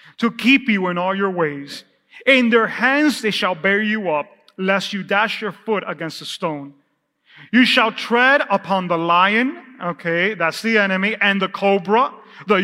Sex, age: male, 30-49